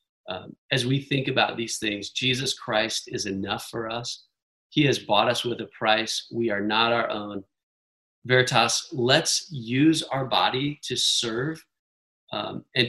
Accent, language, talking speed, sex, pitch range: American, English, 160 wpm, male, 105-125 Hz